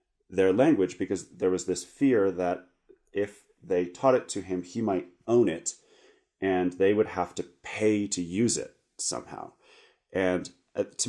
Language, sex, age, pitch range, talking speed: English, male, 30-49, 90-130 Hz, 160 wpm